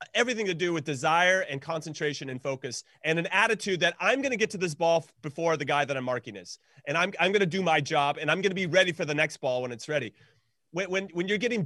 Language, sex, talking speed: English, male, 275 wpm